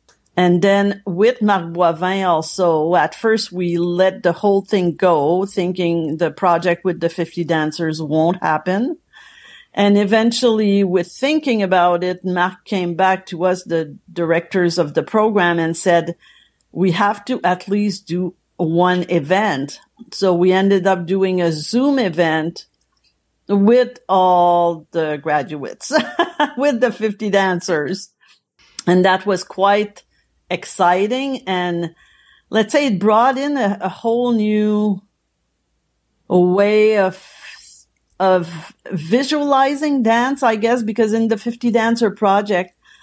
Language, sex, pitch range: English, female, 175-220 Hz